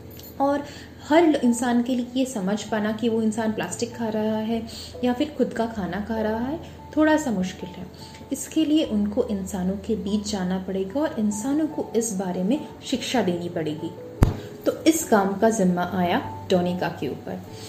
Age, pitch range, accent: 20-39, 185-250 Hz, native